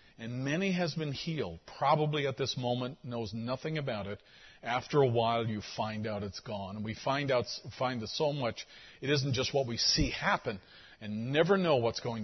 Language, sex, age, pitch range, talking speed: English, male, 50-69, 110-135 Hz, 190 wpm